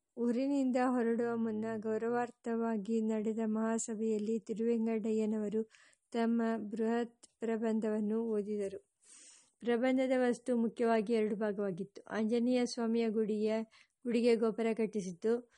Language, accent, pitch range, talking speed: English, Indian, 220-235 Hz, 110 wpm